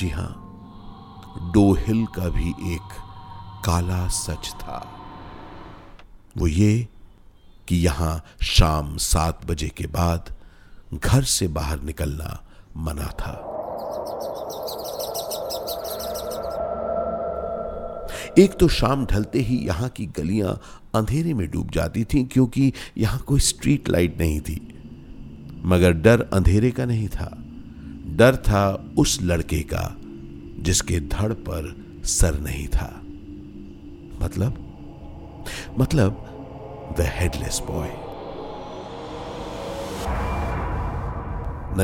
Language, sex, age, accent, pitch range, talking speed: Hindi, male, 50-69, native, 80-120 Hz, 95 wpm